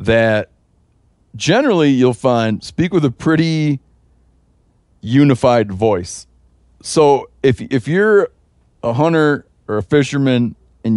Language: English